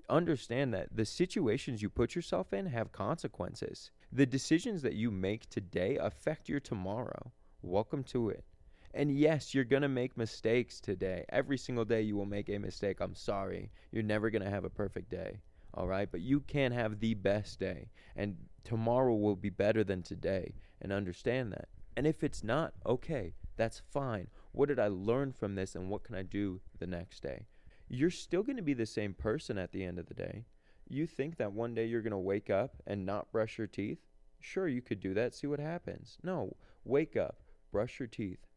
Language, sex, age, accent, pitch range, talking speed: English, male, 20-39, American, 95-120 Hz, 200 wpm